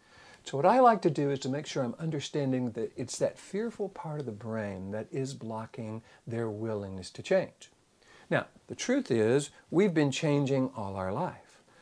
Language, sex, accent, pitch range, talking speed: English, male, American, 115-185 Hz, 190 wpm